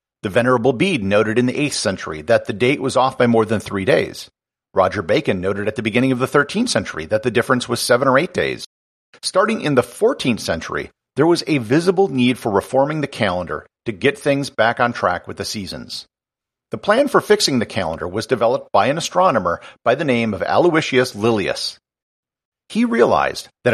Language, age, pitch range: English, 50-69, 115-175 Hz